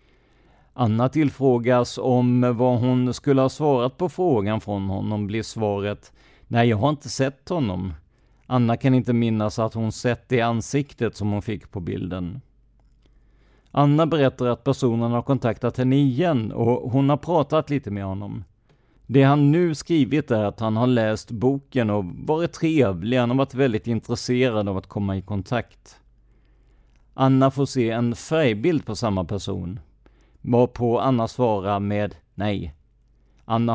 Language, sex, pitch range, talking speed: Swedish, male, 105-135 Hz, 150 wpm